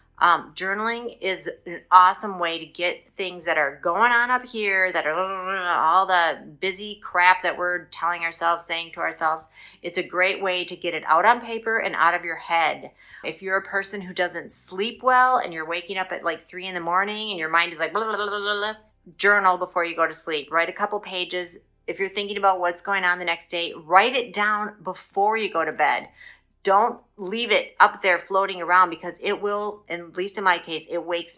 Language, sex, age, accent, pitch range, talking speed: English, female, 30-49, American, 170-200 Hz, 210 wpm